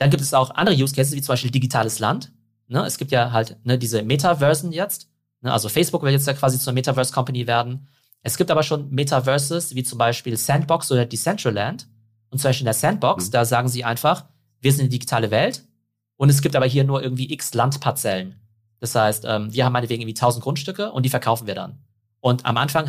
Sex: male